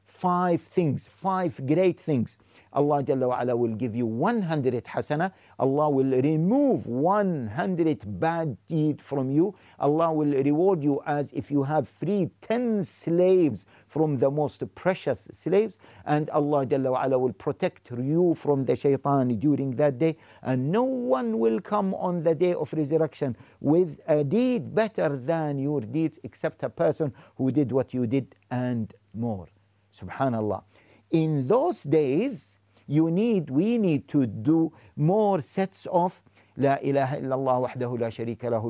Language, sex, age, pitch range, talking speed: English, male, 60-79, 120-175 Hz, 145 wpm